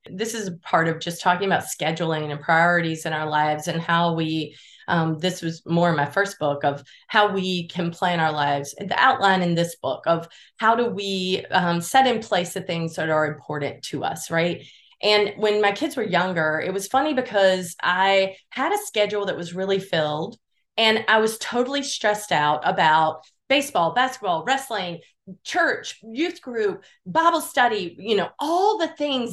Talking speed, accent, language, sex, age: 185 wpm, American, English, female, 30-49